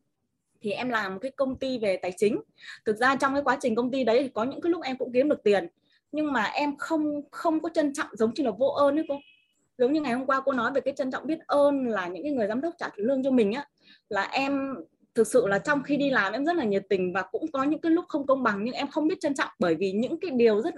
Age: 20-39